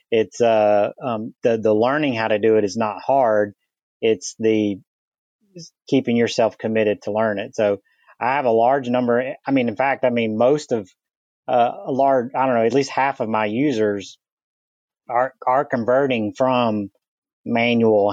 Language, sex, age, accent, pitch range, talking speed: English, male, 30-49, American, 110-125 Hz, 175 wpm